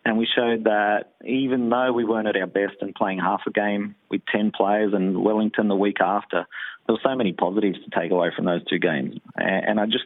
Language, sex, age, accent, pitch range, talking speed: English, male, 30-49, Australian, 95-110 Hz, 235 wpm